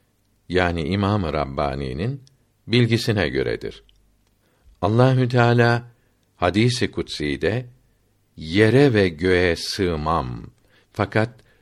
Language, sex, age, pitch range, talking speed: Turkish, male, 60-79, 95-120 Hz, 65 wpm